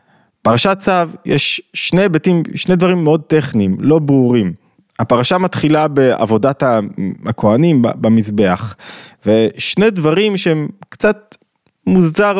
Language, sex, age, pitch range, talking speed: Hebrew, male, 20-39, 115-160 Hz, 95 wpm